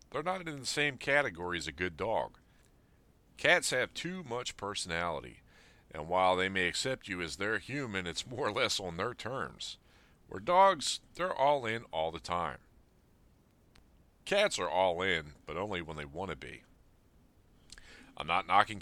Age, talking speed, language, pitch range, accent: 40-59, 170 wpm, English, 85-105 Hz, American